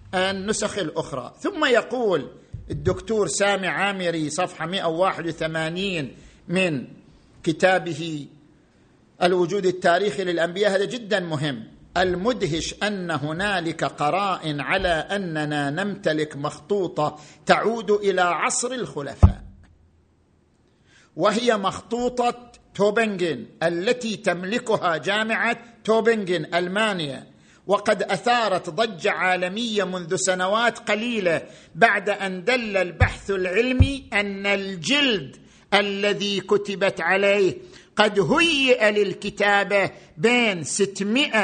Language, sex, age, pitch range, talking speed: Arabic, male, 50-69, 175-225 Hz, 85 wpm